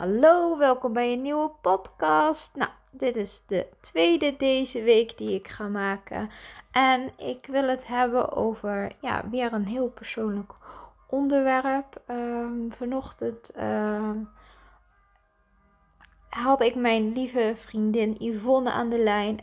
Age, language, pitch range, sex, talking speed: 20-39, Dutch, 205-255 Hz, female, 125 wpm